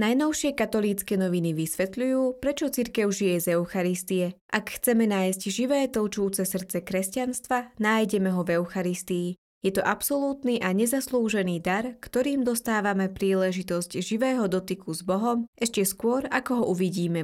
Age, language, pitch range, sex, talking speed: 20-39, Slovak, 185-235 Hz, female, 130 wpm